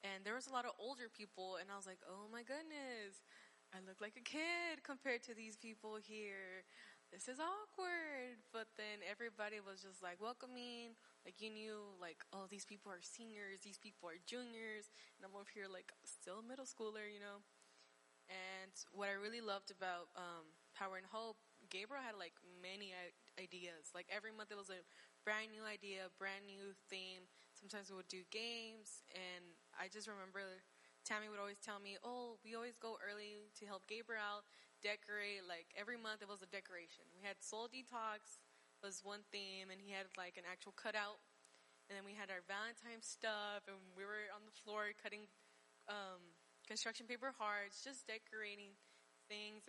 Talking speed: 180 wpm